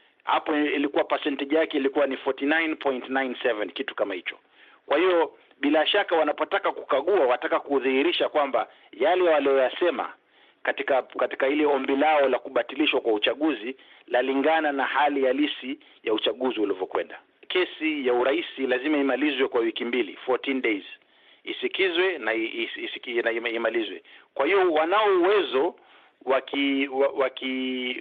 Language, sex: Swahili, male